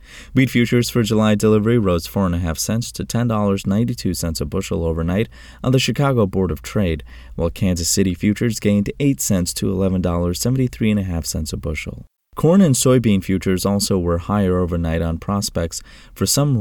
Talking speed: 200 wpm